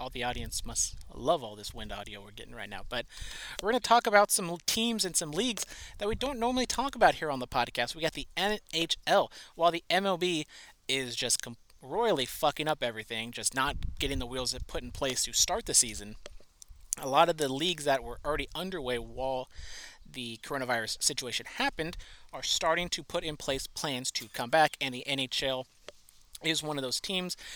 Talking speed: 200 wpm